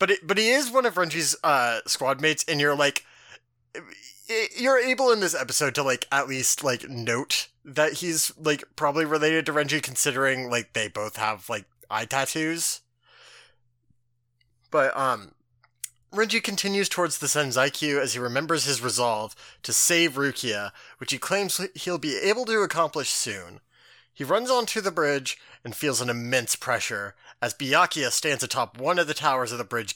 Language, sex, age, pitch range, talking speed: English, male, 30-49, 125-175 Hz, 170 wpm